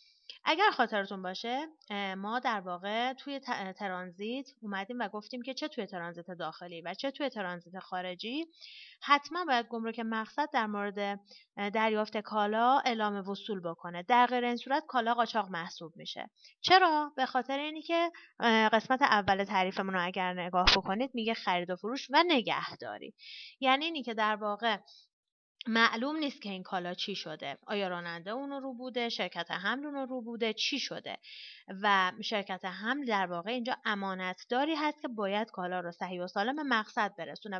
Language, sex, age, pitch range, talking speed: Persian, female, 30-49, 190-265 Hz, 160 wpm